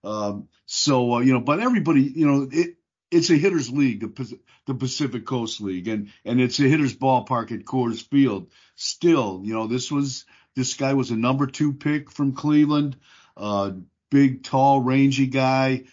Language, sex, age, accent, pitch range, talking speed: English, male, 50-69, American, 115-140 Hz, 175 wpm